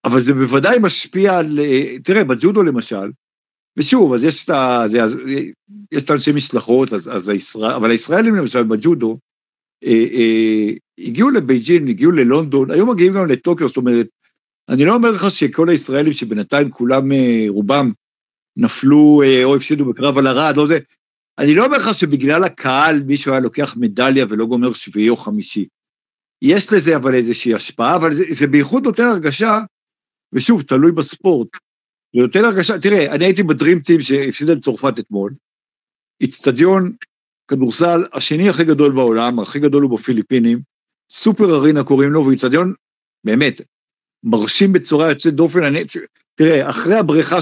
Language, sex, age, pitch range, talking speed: Hebrew, male, 60-79, 125-175 Hz, 145 wpm